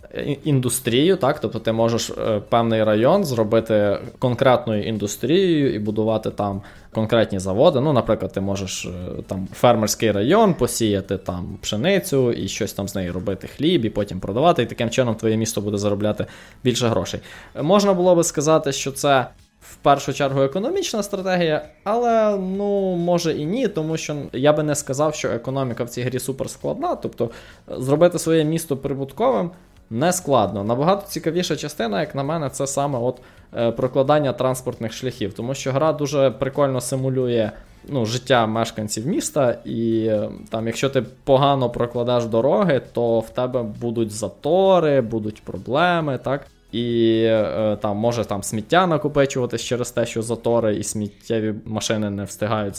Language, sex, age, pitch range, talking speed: Ukrainian, male, 20-39, 110-145 Hz, 150 wpm